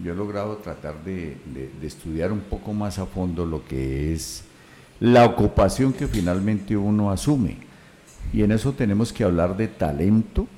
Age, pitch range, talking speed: 50-69, 75-110 Hz, 170 wpm